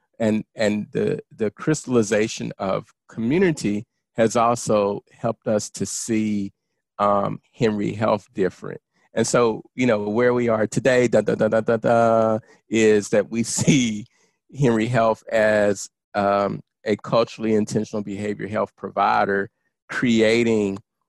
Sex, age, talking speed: male, 40-59, 130 wpm